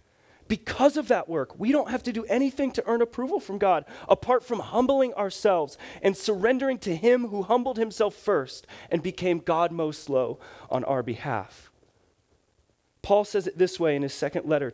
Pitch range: 135-205 Hz